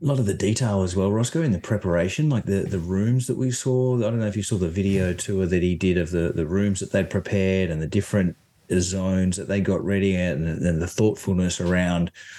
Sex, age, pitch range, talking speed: male, 30-49, 90-105 Hz, 245 wpm